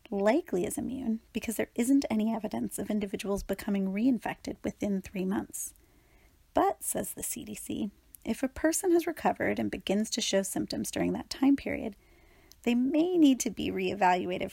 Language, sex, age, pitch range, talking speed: English, female, 30-49, 200-245 Hz, 160 wpm